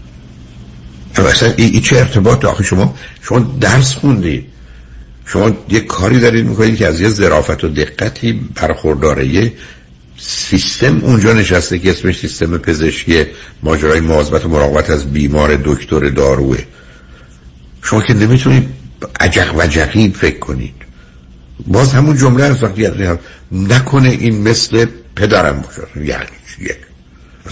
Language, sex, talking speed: Persian, male, 120 wpm